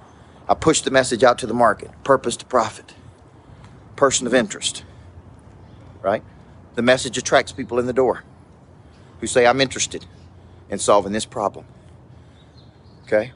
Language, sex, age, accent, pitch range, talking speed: English, male, 40-59, American, 100-130 Hz, 140 wpm